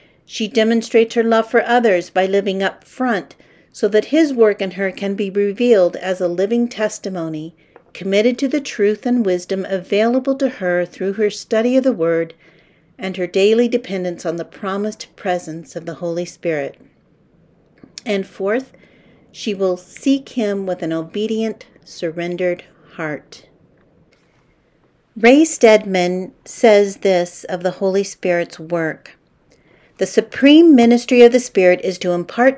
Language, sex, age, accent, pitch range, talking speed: English, female, 50-69, American, 180-240 Hz, 145 wpm